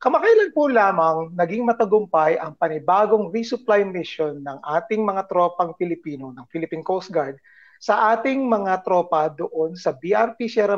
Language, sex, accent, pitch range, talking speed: Filipino, male, native, 160-225 Hz, 145 wpm